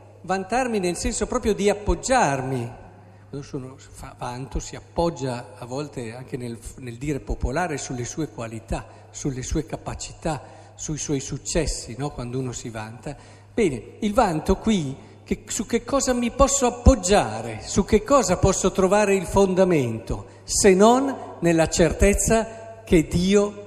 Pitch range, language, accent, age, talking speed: 110-185 Hz, Italian, native, 50-69, 140 wpm